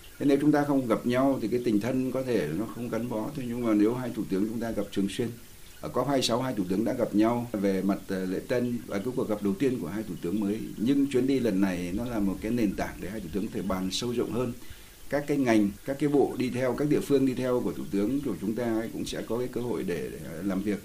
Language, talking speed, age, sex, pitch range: Vietnamese, 295 wpm, 60-79, male, 100-120 Hz